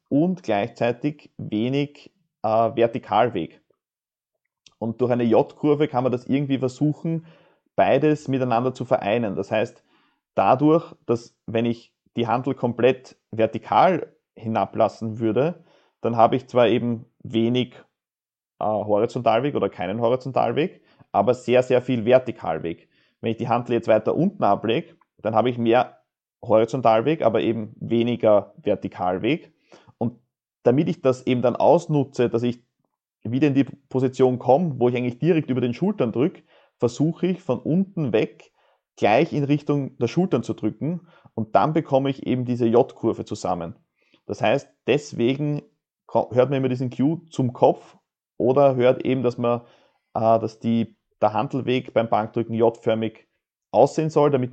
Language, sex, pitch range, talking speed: German, male, 115-140 Hz, 140 wpm